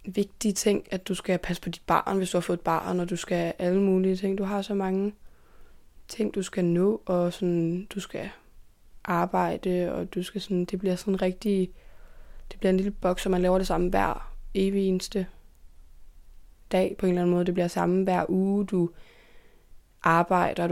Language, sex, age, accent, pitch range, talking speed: Danish, female, 20-39, native, 175-190 Hz, 195 wpm